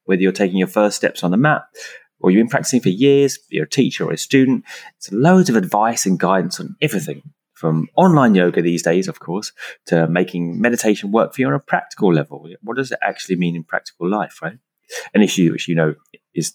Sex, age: male, 30-49